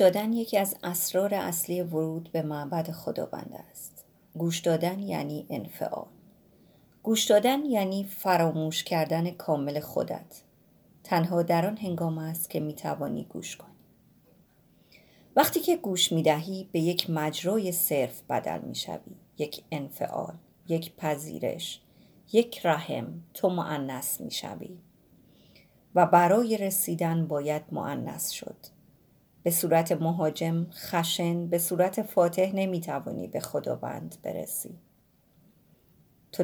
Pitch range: 160-190 Hz